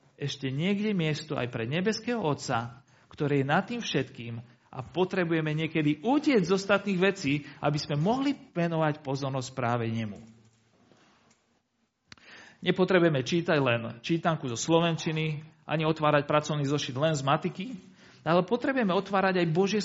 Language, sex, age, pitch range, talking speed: Slovak, male, 40-59, 140-185 Hz, 135 wpm